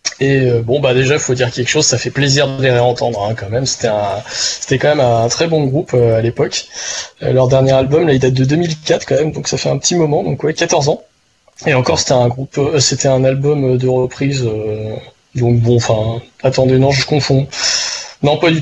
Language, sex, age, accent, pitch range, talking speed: French, male, 20-39, French, 120-150 Hz, 230 wpm